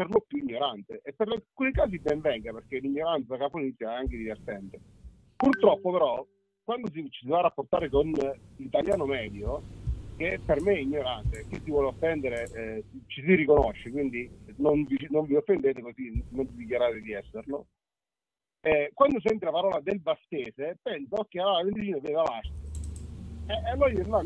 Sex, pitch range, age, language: male, 130-200 Hz, 40-59, Italian